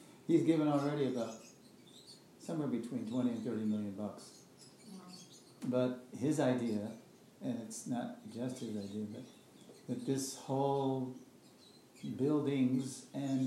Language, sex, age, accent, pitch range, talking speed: English, male, 60-79, American, 120-135 Hz, 115 wpm